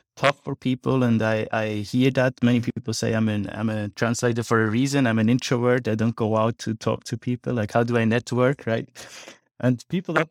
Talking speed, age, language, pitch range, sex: 240 wpm, 20-39, English, 110-125 Hz, male